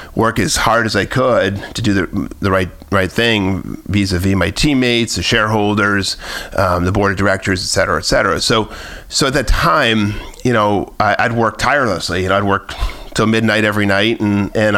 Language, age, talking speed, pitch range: English, 40-59, 195 wpm, 95-115 Hz